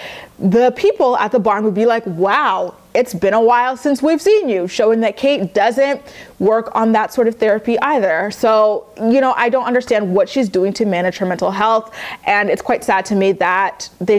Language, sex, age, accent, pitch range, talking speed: English, female, 20-39, American, 190-240 Hz, 210 wpm